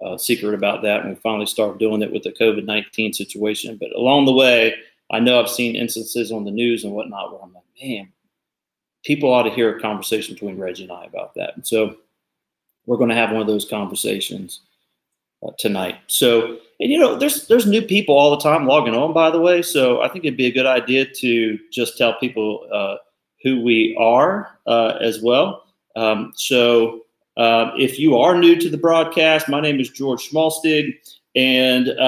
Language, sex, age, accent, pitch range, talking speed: English, male, 30-49, American, 110-130 Hz, 200 wpm